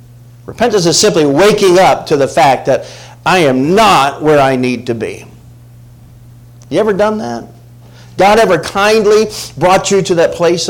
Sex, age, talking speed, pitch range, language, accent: male, 50-69, 165 wpm, 120-160 Hz, English, American